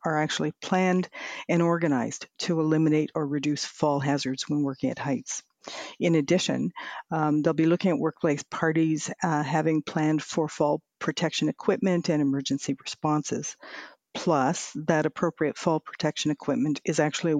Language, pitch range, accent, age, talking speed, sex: English, 145-165 Hz, American, 50-69, 145 wpm, female